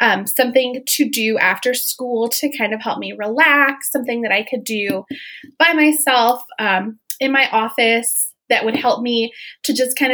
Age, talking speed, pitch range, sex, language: 20-39, 180 wpm, 225-280 Hz, female, English